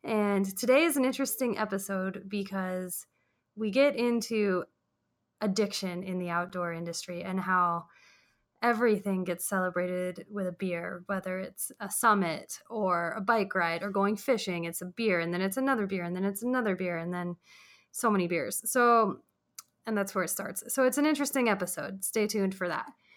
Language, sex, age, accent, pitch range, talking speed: English, female, 20-39, American, 180-210 Hz, 175 wpm